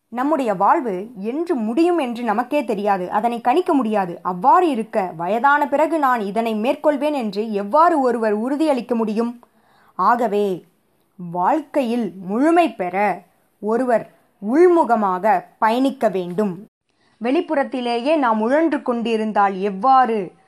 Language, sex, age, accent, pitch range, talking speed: Tamil, female, 20-39, native, 210-275 Hz, 105 wpm